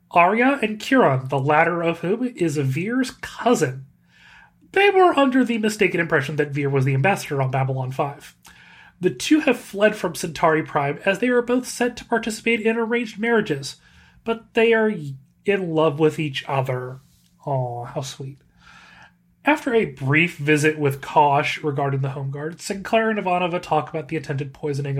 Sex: male